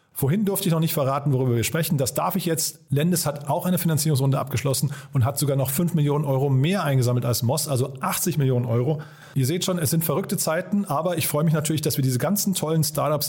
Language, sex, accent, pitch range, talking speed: German, male, German, 135-165 Hz, 235 wpm